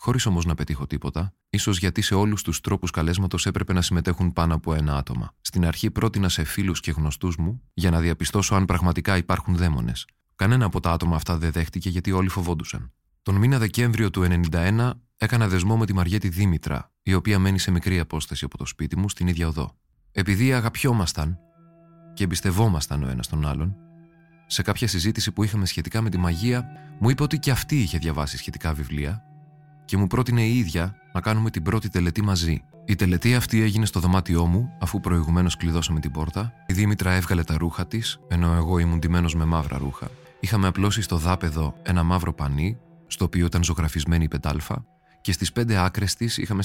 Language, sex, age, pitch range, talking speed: Greek, male, 30-49, 85-105 Hz, 190 wpm